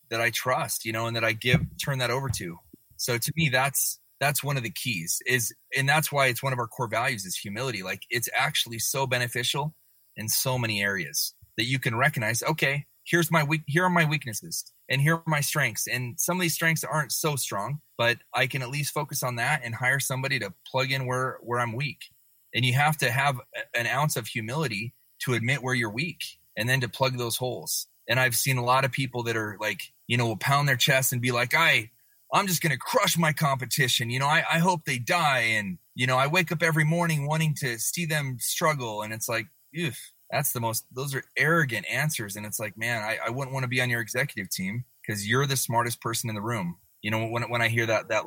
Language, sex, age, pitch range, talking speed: English, male, 30-49, 115-145 Hz, 240 wpm